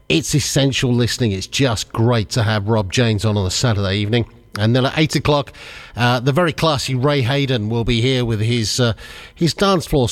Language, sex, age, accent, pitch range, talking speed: English, male, 50-69, British, 110-145 Hz, 195 wpm